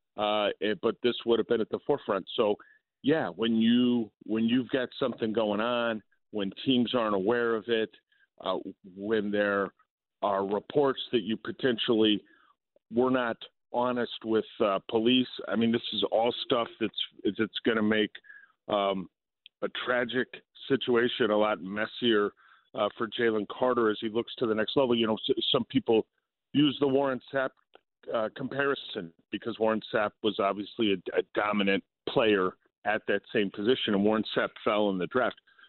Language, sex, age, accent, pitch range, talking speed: English, male, 40-59, American, 105-125 Hz, 165 wpm